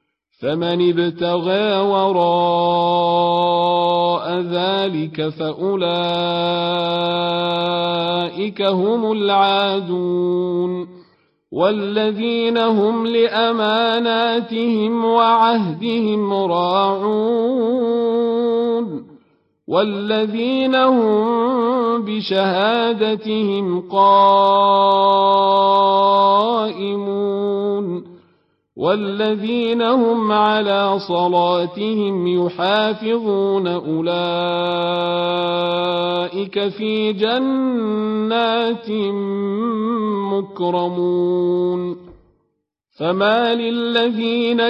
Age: 50-69